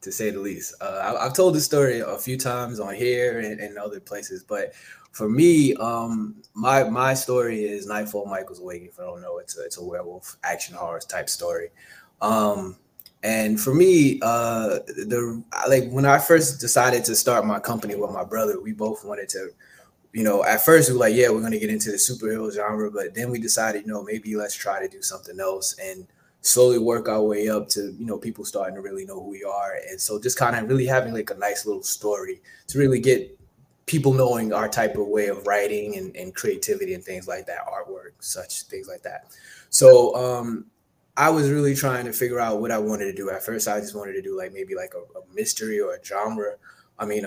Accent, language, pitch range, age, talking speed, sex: American, English, 105-155 Hz, 20-39, 225 wpm, male